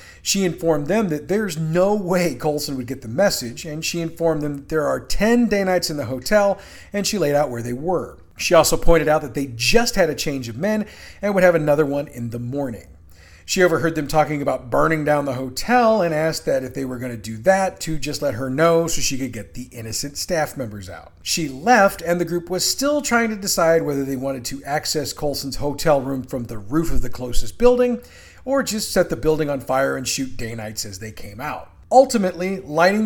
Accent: American